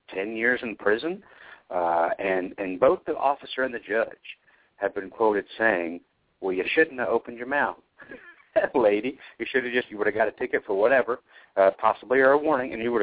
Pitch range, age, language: 95-140 Hz, 60-79, English